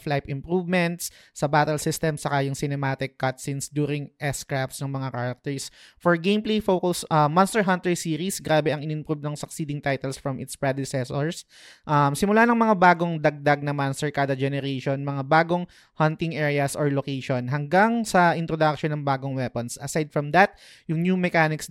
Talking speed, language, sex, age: 160 wpm, Filipino, male, 20-39